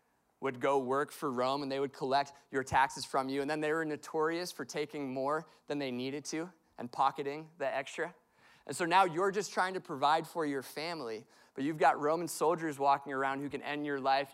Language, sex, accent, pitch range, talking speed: English, male, American, 135-165 Hz, 220 wpm